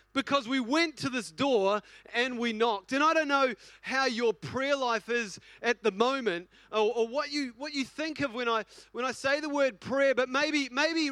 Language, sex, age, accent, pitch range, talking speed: English, male, 30-49, Australian, 220-280 Hz, 215 wpm